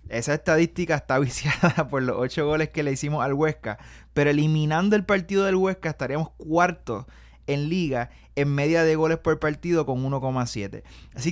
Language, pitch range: Spanish, 135-175 Hz